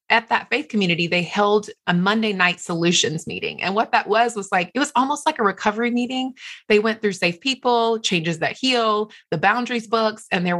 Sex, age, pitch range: female, 30-49, 175-235 Hz